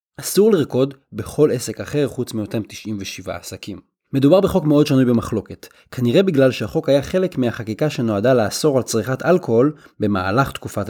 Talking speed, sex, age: 150 wpm, male, 30-49